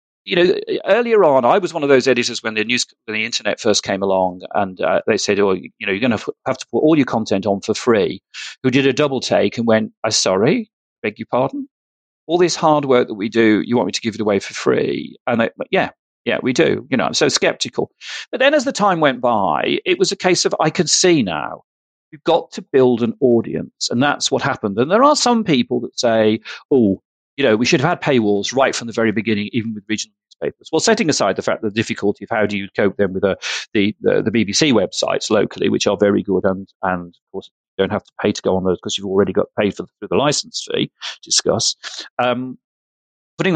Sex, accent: male, British